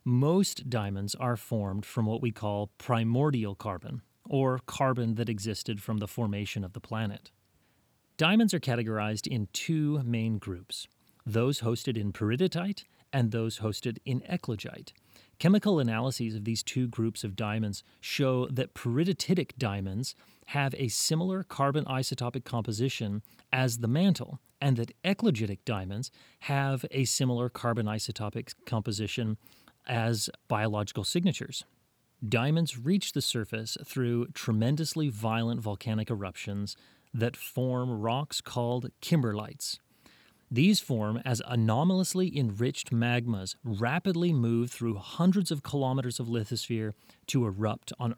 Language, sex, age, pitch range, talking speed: English, male, 30-49, 110-140 Hz, 125 wpm